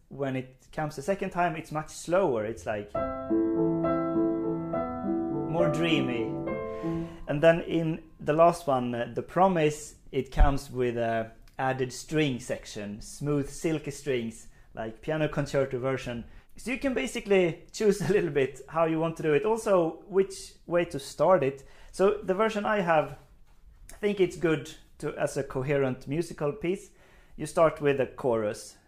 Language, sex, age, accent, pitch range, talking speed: English, male, 30-49, Swedish, 125-170 Hz, 155 wpm